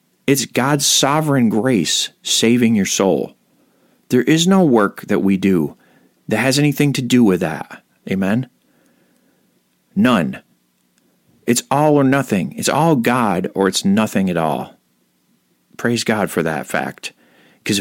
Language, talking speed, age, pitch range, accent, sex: English, 140 wpm, 40-59, 90-130 Hz, American, male